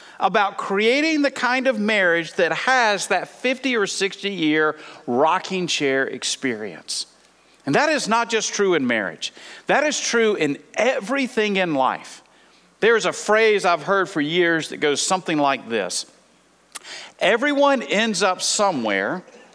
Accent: American